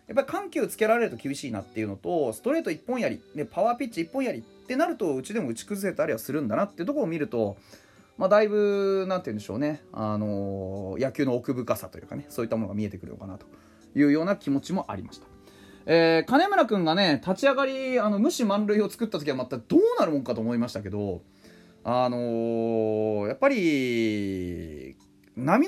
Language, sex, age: Japanese, male, 30-49